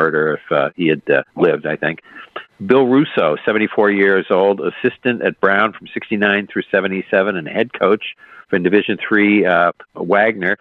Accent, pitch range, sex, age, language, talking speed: American, 90-105 Hz, male, 50-69, English, 170 wpm